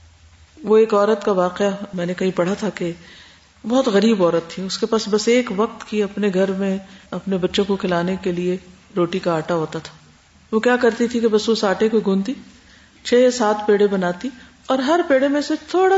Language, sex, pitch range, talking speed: Urdu, female, 180-250 Hz, 215 wpm